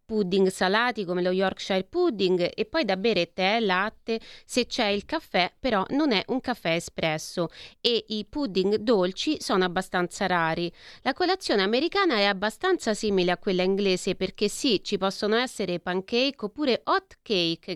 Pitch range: 185-235 Hz